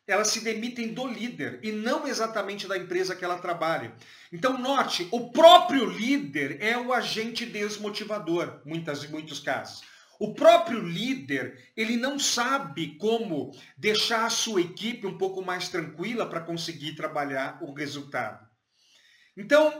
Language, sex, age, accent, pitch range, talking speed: Portuguese, male, 50-69, Brazilian, 155-230 Hz, 140 wpm